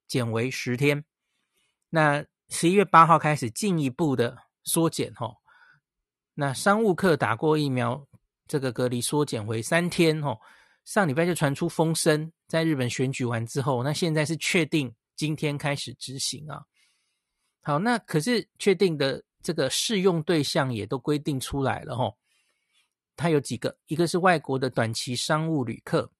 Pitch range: 130-165 Hz